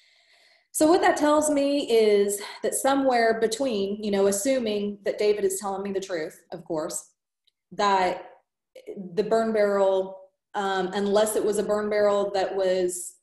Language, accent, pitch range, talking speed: English, American, 175-205 Hz, 155 wpm